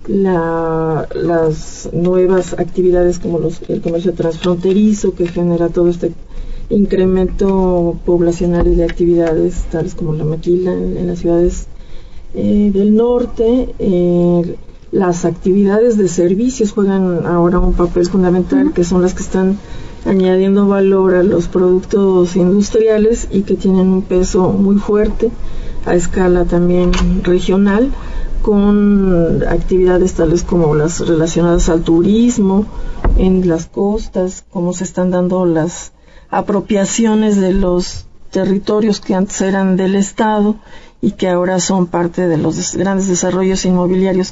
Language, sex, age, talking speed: Spanish, female, 40-59, 130 wpm